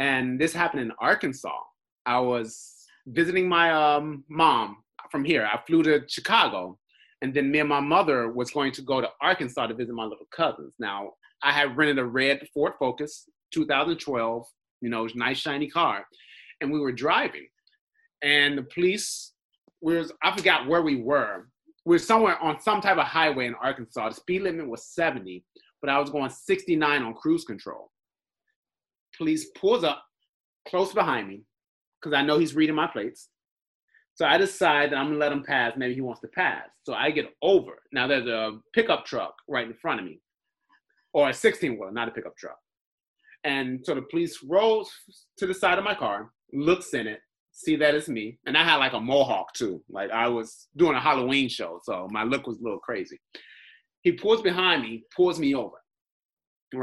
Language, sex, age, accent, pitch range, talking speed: English, male, 30-49, American, 130-185 Hz, 195 wpm